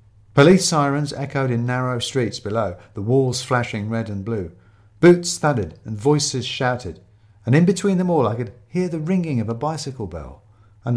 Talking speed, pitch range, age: 180 wpm, 105-140 Hz, 50-69